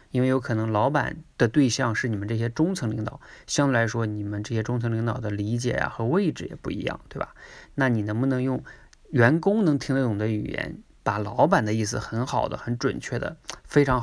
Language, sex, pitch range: Chinese, male, 110-135 Hz